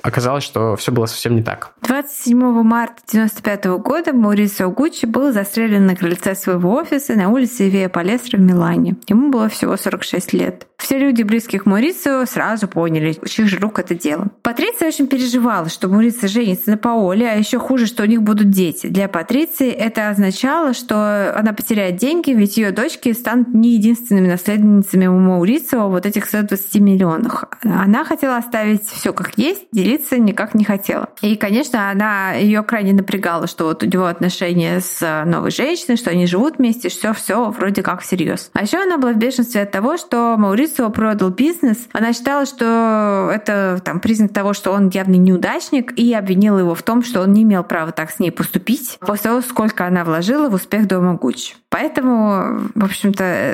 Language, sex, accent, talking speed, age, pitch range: Russian, female, native, 180 wpm, 20-39, 190-240 Hz